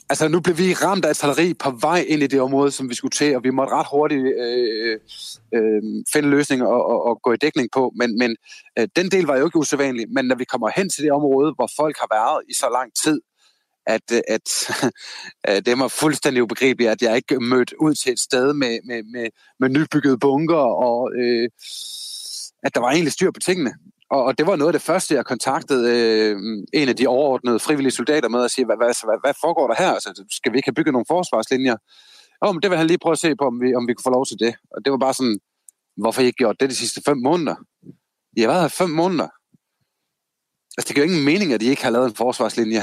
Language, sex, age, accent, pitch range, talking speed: Danish, male, 30-49, native, 120-155 Hz, 245 wpm